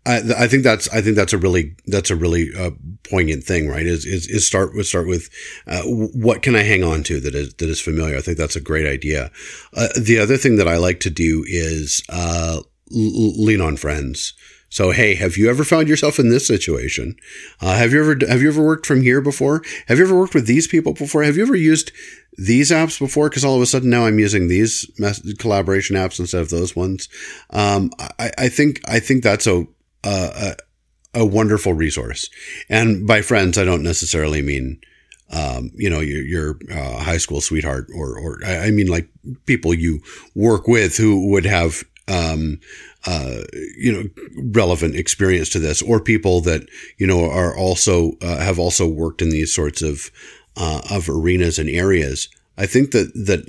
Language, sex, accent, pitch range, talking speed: English, male, American, 80-115 Hz, 200 wpm